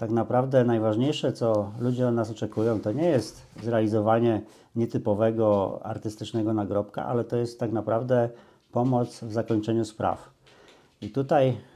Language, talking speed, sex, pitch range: Polish, 135 wpm, male, 110-130 Hz